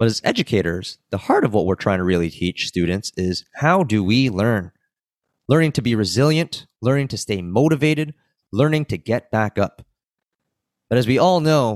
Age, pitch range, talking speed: 20-39, 115-160 Hz, 185 wpm